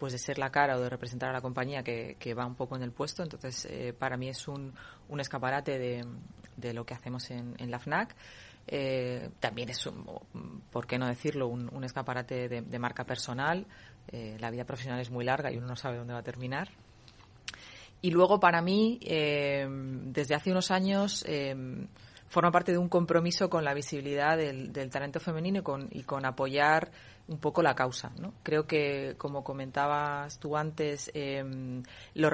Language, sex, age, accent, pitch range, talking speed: Spanish, female, 30-49, Spanish, 125-155 Hz, 195 wpm